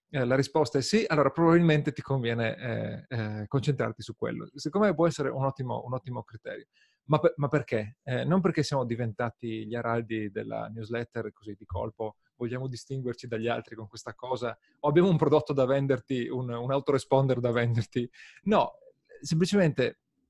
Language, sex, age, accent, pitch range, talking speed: Italian, male, 30-49, native, 115-145 Hz, 170 wpm